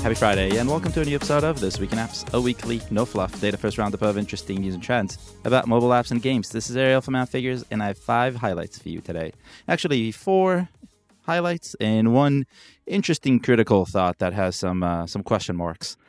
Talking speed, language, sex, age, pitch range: 210 wpm, English, male, 20-39, 95-125 Hz